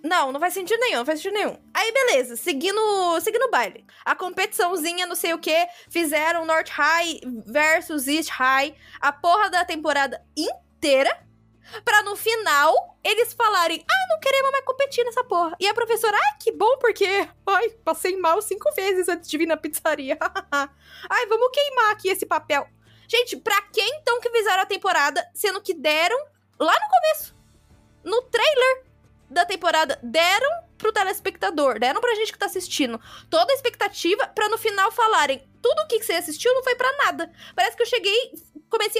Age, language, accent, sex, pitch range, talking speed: 10-29, Portuguese, Brazilian, female, 290-425 Hz, 175 wpm